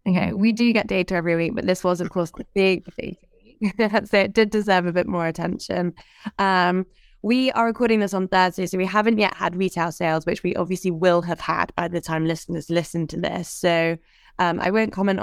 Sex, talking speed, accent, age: female, 215 wpm, British, 20-39